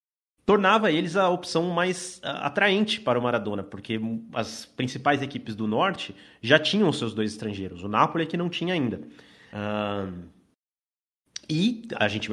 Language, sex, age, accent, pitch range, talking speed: Portuguese, male, 30-49, Brazilian, 110-175 Hz, 150 wpm